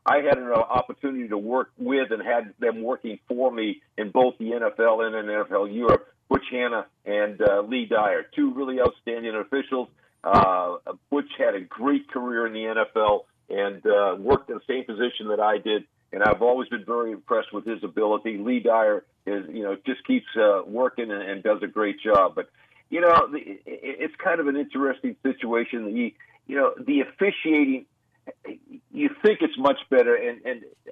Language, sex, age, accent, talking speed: English, male, 50-69, American, 185 wpm